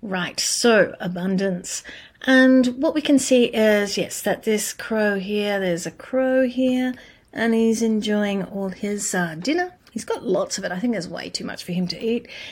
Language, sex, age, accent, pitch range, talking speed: English, female, 40-59, Australian, 195-255 Hz, 190 wpm